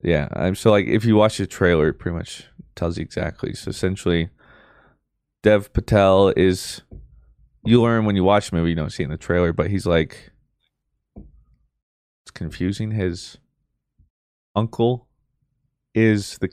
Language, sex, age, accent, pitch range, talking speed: English, male, 20-39, American, 85-100 Hz, 155 wpm